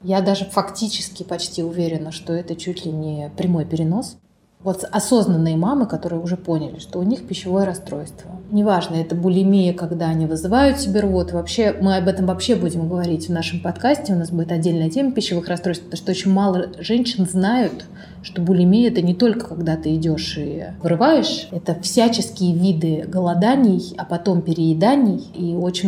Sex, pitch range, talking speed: female, 170-200 Hz, 170 wpm